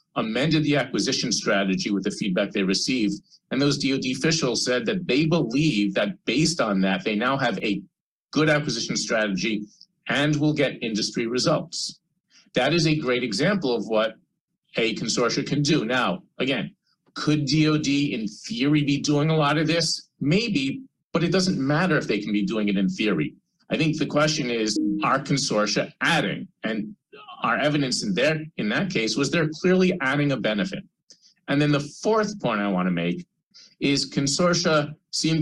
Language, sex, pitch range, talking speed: English, male, 110-160 Hz, 175 wpm